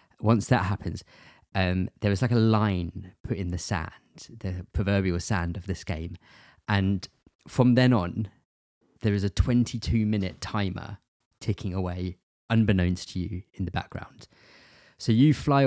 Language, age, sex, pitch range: English, 20-39, male, 90-110 Hz